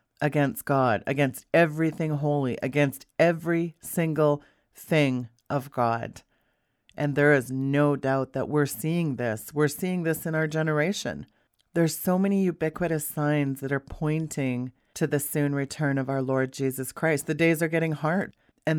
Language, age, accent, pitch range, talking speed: English, 40-59, American, 140-170 Hz, 155 wpm